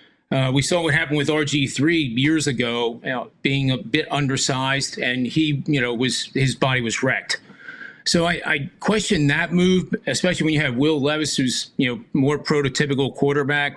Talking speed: 185 wpm